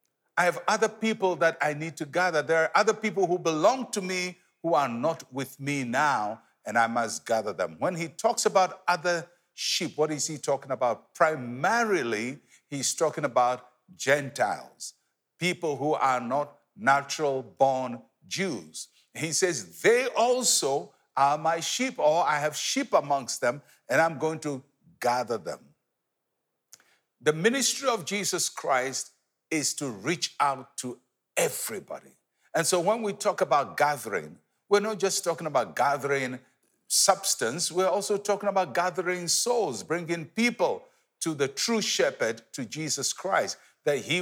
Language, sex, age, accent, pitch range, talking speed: English, male, 60-79, Nigerian, 140-195 Hz, 150 wpm